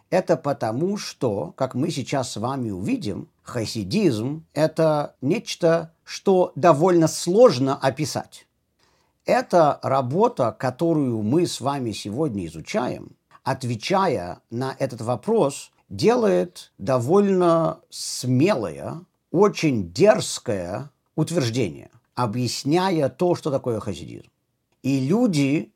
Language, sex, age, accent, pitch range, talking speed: Russian, male, 50-69, native, 120-170 Hz, 95 wpm